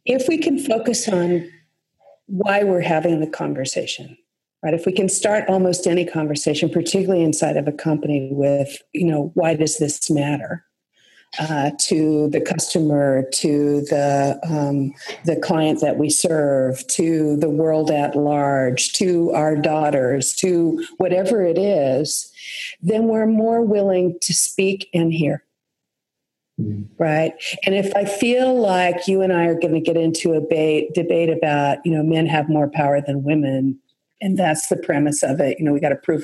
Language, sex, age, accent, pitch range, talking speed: English, female, 50-69, American, 150-185 Hz, 165 wpm